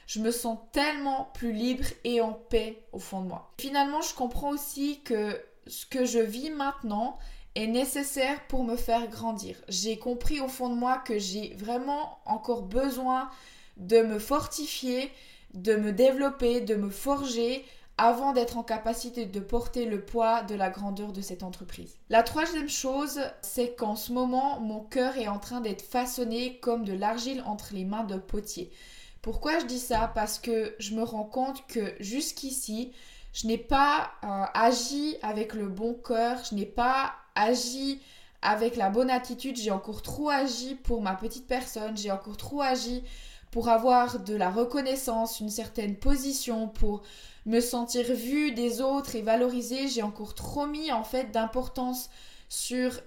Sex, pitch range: female, 220-260 Hz